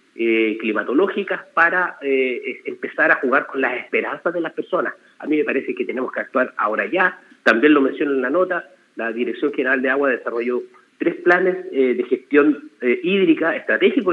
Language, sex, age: Spanish, male, 40-59